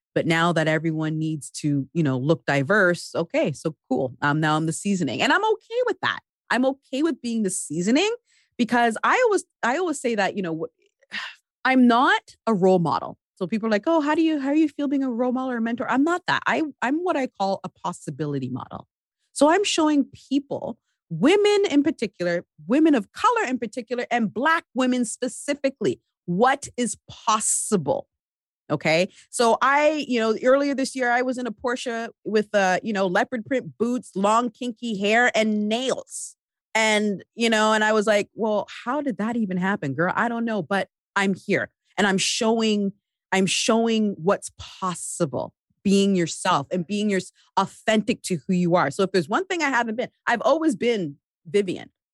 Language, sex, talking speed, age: English, female, 190 wpm, 30-49